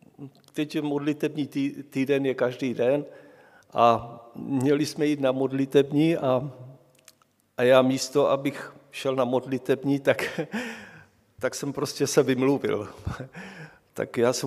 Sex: male